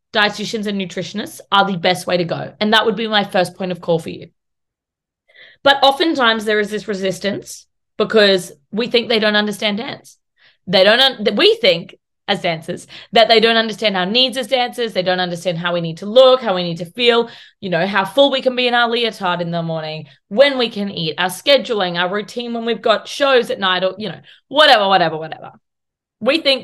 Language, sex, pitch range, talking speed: English, female, 185-240 Hz, 215 wpm